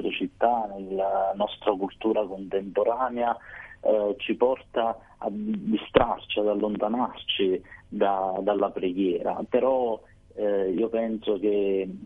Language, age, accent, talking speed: Italian, 30-49, native, 95 wpm